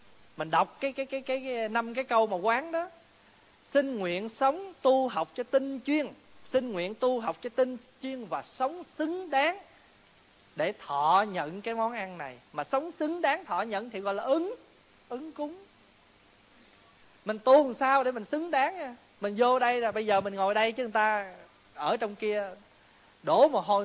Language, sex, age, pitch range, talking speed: Vietnamese, male, 20-39, 175-260 Hz, 195 wpm